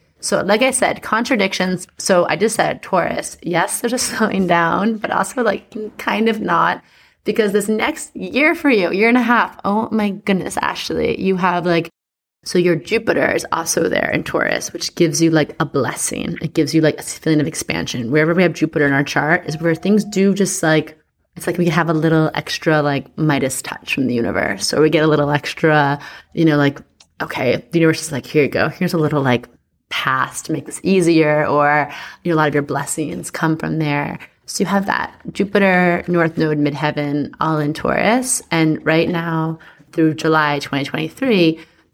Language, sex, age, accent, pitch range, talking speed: English, female, 20-39, American, 155-200 Hz, 200 wpm